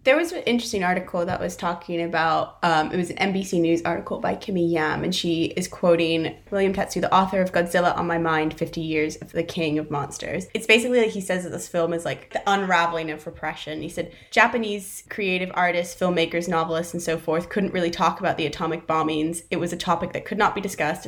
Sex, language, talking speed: female, English, 225 wpm